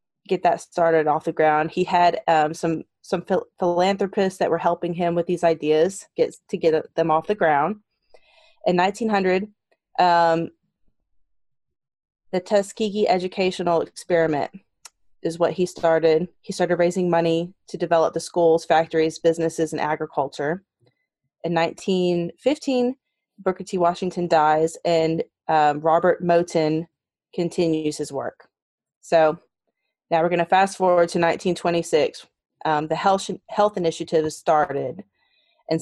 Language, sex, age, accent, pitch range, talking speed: English, female, 30-49, American, 160-185 Hz, 130 wpm